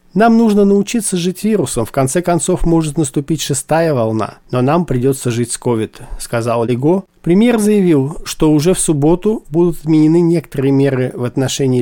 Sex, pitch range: male, 130-170 Hz